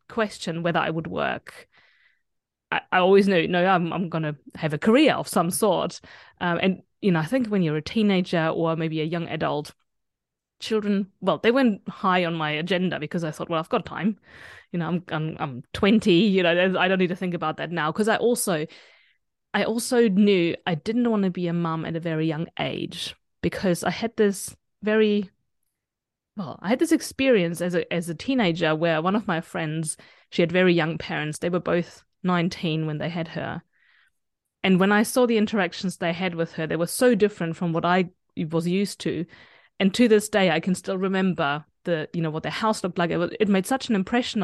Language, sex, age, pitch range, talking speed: English, female, 20-39, 165-205 Hz, 215 wpm